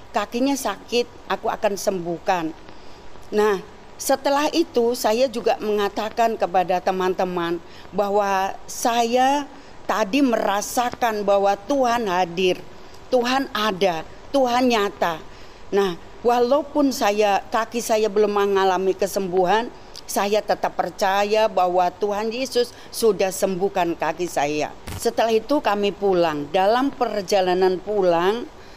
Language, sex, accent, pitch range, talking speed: Indonesian, female, native, 195-245 Hz, 100 wpm